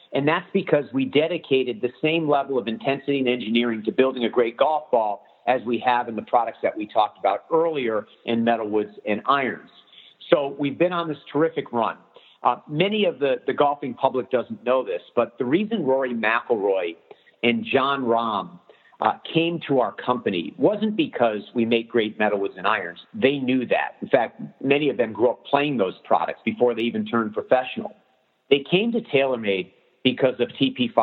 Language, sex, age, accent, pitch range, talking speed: English, male, 50-69, American, 115-160 Hz, 185 wpm